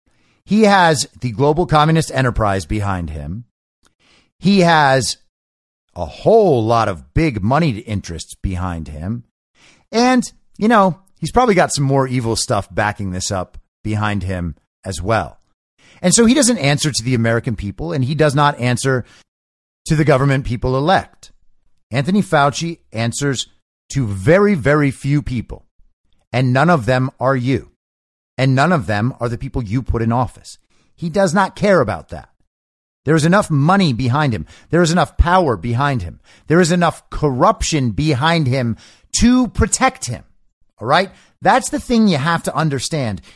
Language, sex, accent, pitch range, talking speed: English, male, American, 105-165 Hz, 160 wpm